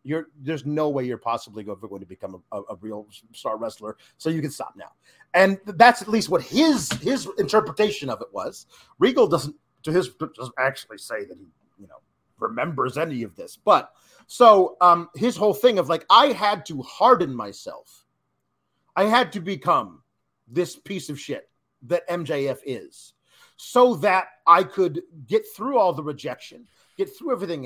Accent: American